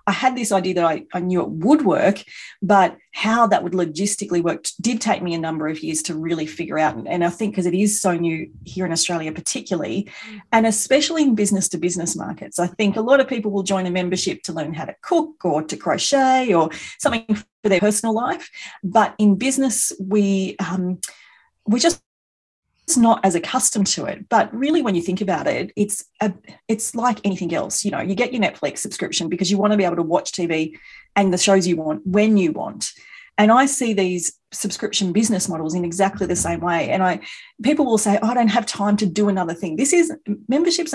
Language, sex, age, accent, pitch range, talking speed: English, female, 40-59, Australian, 175-225 Hz, 220 wpm